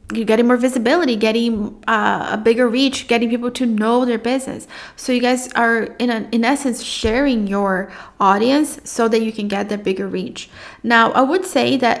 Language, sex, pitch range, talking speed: English, female, 210-245 Hz, 195 wpm